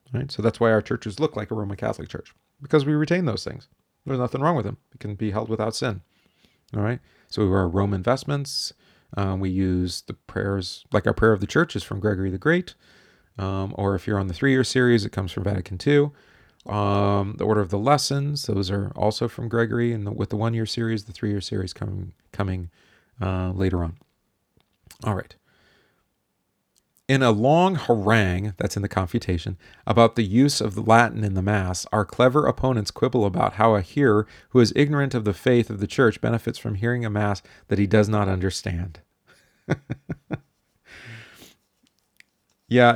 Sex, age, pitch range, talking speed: male, 30-49, 100-120 Hz, 185 wpm